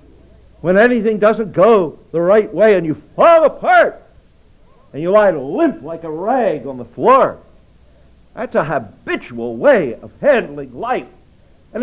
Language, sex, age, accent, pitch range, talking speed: English, male, 60-79, American, 145-225 Hz, 145 wpm